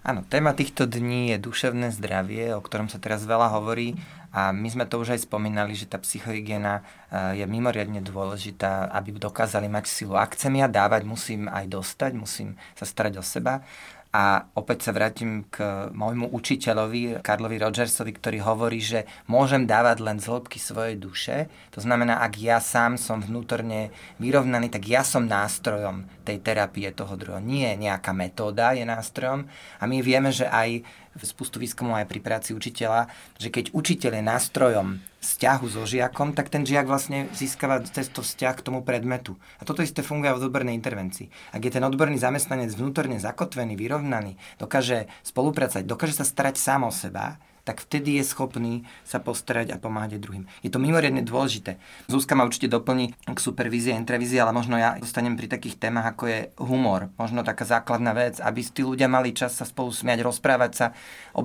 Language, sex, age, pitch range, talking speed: Slovak, male, 30-49, 105-130 Hz, 180 wpm